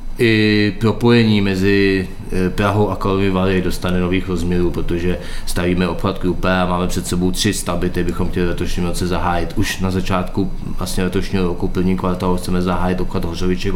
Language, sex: Czech, male